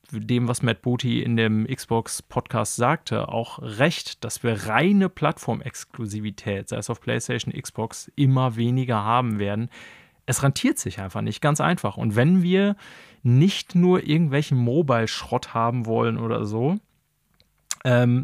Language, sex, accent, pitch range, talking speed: German, male, German, 115-145 Hz, 140 wpm